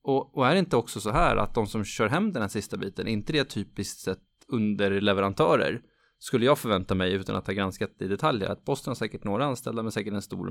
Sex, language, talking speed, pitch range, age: male, Swedish, 235 wpm, 105-140 Hz, 20-39